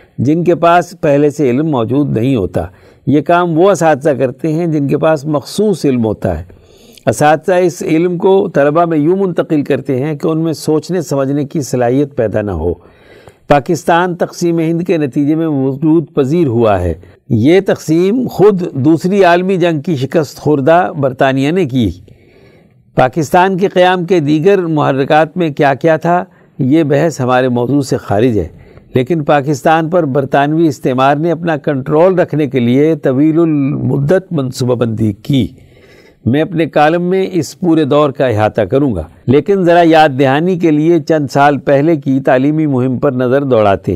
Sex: male